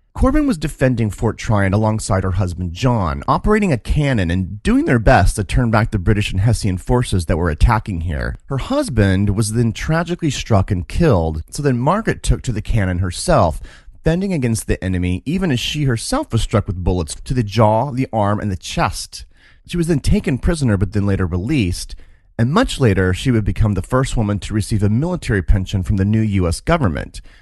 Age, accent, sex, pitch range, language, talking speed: 30-49, American, male, 95-130 Hz, English, 200 wpm